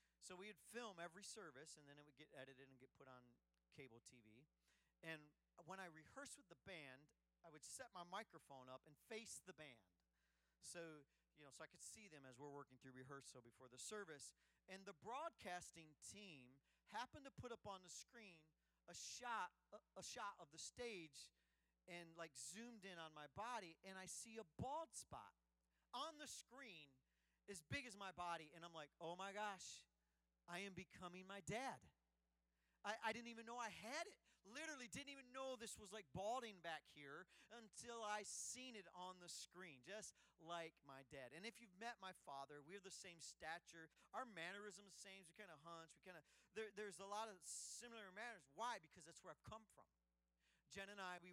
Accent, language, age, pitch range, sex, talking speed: American, English, 40-59, 140-210 Hz, male, 200 wpm